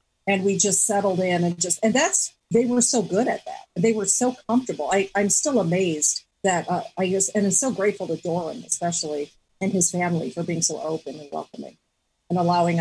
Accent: American